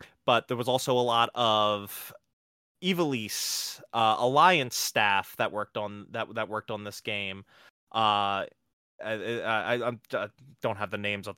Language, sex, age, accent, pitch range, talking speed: English, male, 20-39, American, 105-130 Hz, 165 wpm